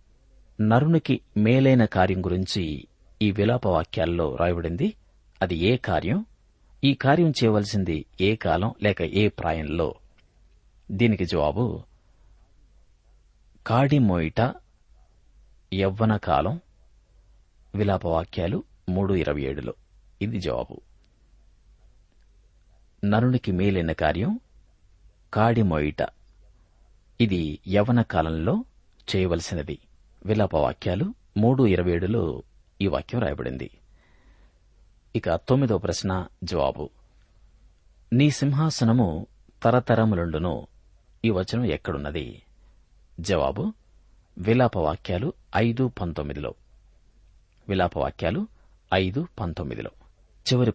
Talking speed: 55 wpm